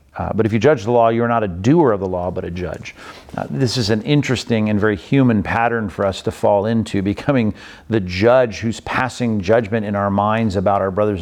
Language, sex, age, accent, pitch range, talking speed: English, male, 50-69, American, 100-125 Hz, 230 wpm